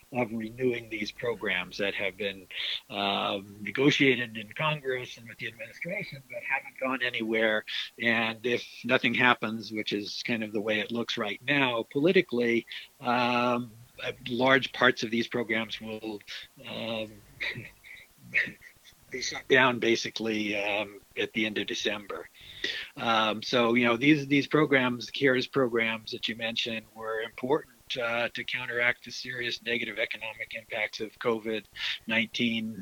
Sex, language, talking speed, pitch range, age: male, English, 140 wpm, 110-125 Hz, 60-79